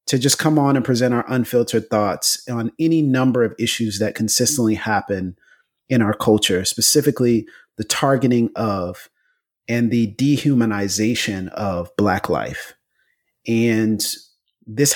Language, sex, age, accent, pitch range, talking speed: English, male, 30-49, American, 105-125 Hz, 130 wpm